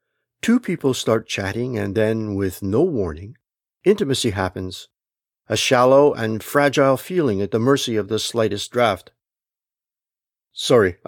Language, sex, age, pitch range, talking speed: English, male, 60-79, 105-145 Hz, 130 wpm